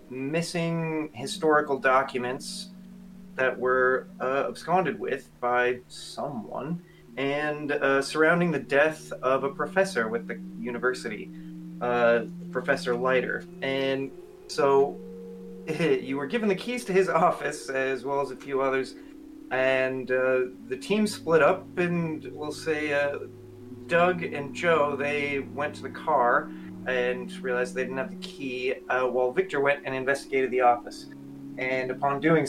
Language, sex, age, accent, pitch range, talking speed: English, male, 30-49, American, 130-165 Hz, 140 wpm